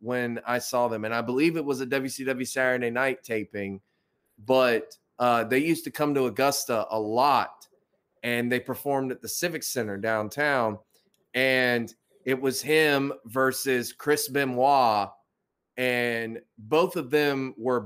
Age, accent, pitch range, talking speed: 20-39, American, 120-140 Hz, 150 wpm